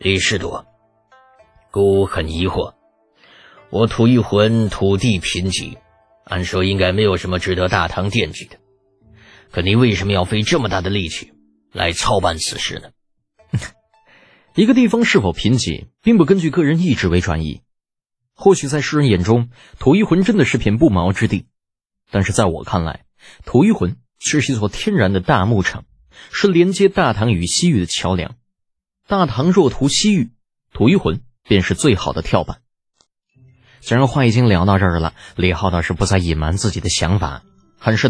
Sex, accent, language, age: male, native, Chinese, 30-49